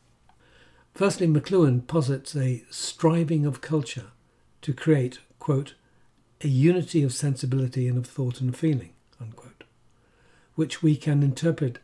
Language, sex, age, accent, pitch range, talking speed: English, male, 60-79, British, 125-150 Hz, 120 wpm